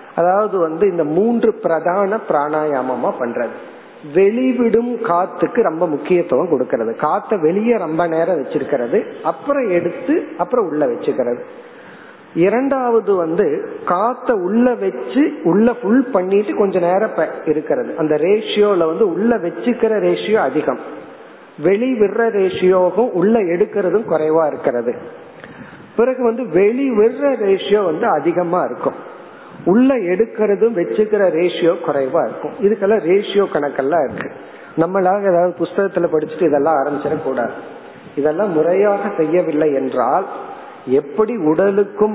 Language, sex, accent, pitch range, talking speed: Tamil, male, native, 155-225 Hz, 110 wpm